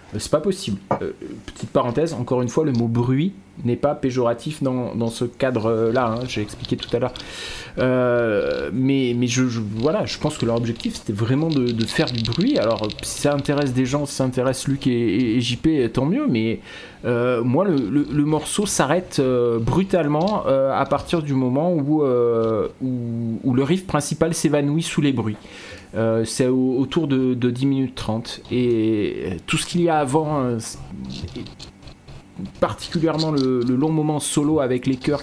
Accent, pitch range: French, 115-145 Hz